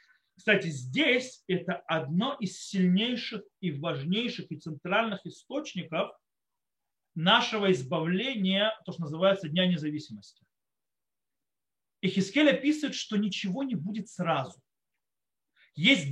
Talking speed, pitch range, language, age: 100 wpm, 175-245 Hz, Russian, 40-59